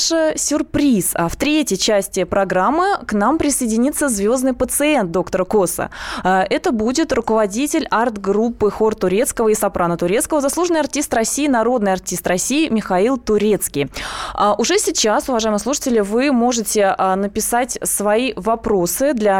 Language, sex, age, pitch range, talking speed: Russian, female, 20-39, 195-260 Hz, 125 wpm